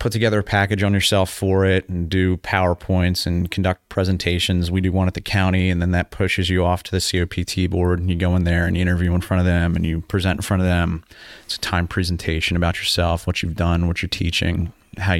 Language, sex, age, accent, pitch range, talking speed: English, male, 30-49, American, 90-100 Hz, 245 wpm